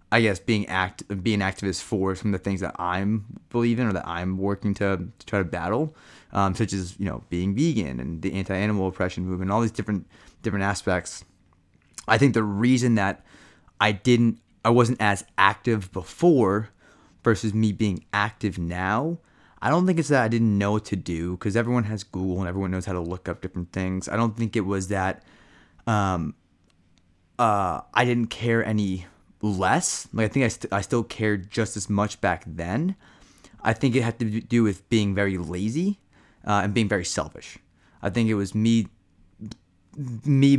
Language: English